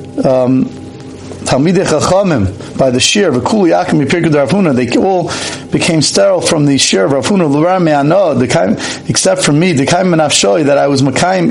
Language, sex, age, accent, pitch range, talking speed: English, male, 50-69, American, 135-170 Hz, 170 wpm